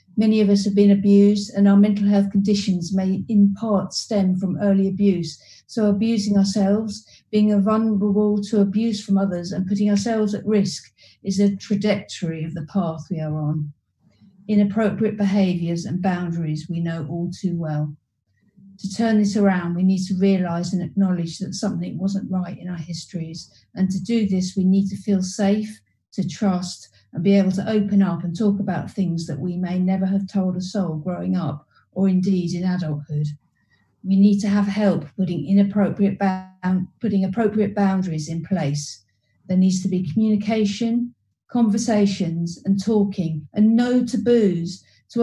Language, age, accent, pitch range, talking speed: English, 50-69, British, 175-205 Hz, 170 wpm